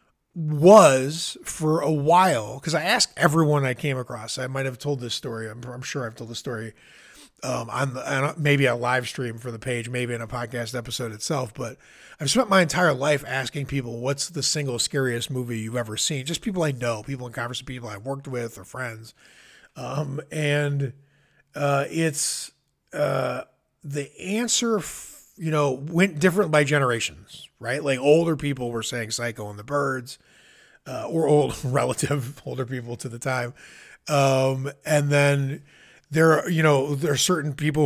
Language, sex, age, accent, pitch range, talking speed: English, male, 30-49, American, 125-155 Hz, 180 wpm